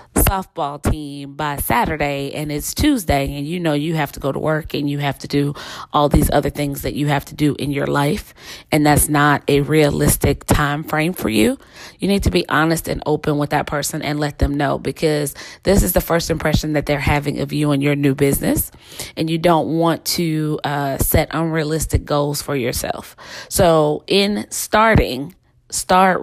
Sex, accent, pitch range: female, American, 145-165 Hz